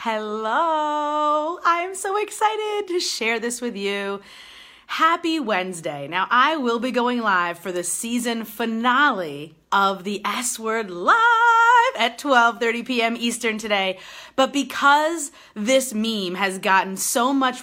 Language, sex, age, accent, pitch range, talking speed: English, female, 30-49, American, 200-275 Hz, 135 wpm